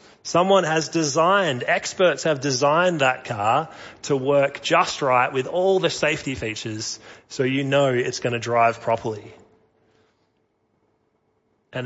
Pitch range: 125-165 Hz